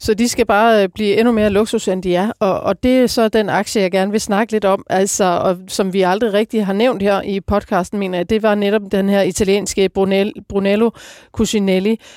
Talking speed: 220 wpm